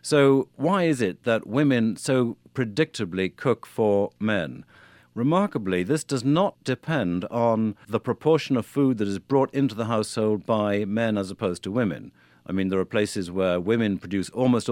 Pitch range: 100-130 Hz